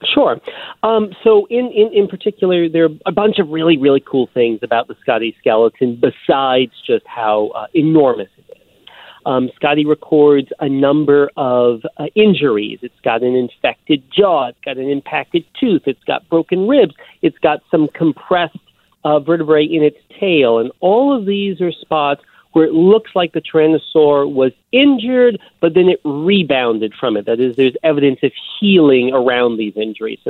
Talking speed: 175 wpm